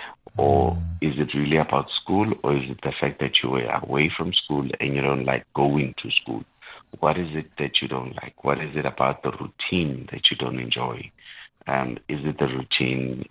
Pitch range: 65-75 Hz